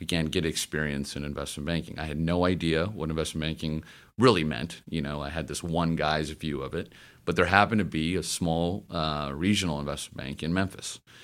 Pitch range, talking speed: 75-90 Hz, 205 wpm